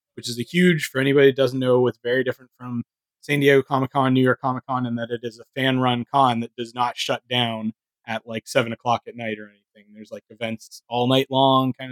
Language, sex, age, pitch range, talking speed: English, male, 20-39, 110-125 Hz, 240 wpm